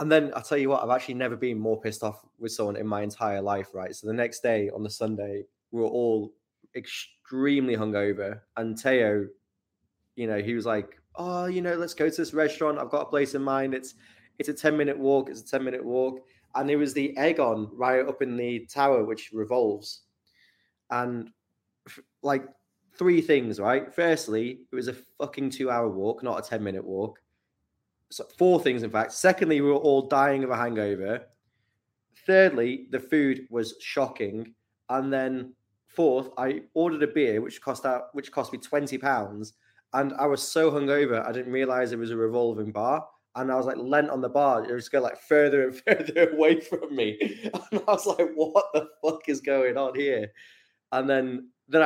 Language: English